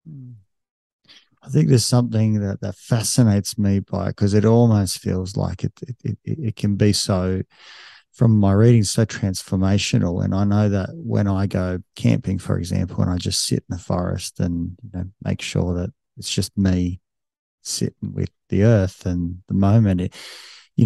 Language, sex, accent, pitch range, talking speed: English, male, Australian, 95-115 Hz, 180 wpm